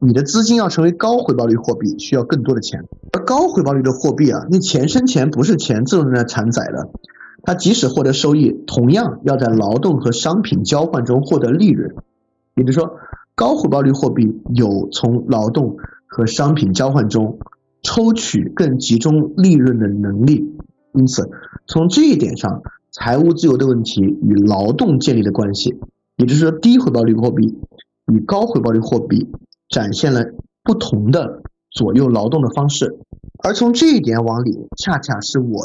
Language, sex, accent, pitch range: Chinese, male, native, 115-165 Hz